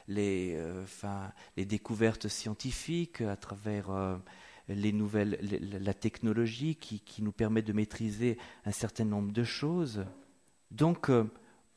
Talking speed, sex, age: 140 wpm, male, 40-59